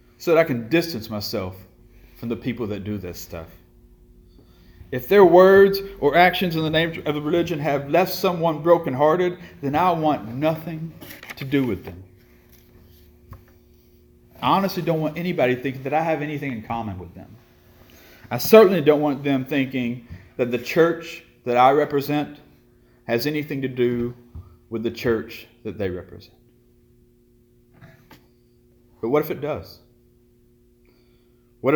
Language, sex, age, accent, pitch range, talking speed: English, male, 40-59, American, 115-145 Hz, 145 wpm